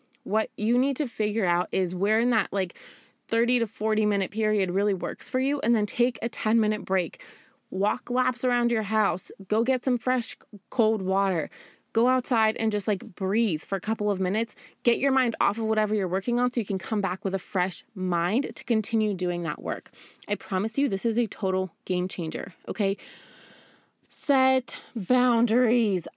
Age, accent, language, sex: 20-39, American, English, female